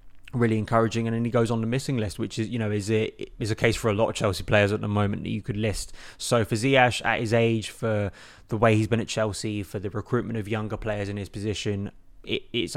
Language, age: English, 20-39